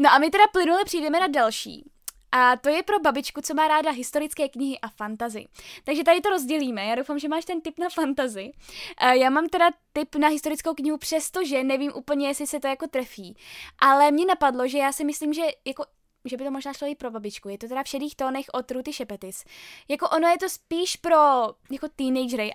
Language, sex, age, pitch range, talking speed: Czech, female, 10-29, 255-310 Hz, 215 wpm